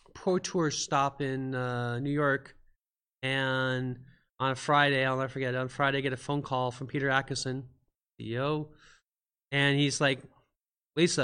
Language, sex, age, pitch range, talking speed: English, male, 30-49, 125-150 Hz, 160 wpm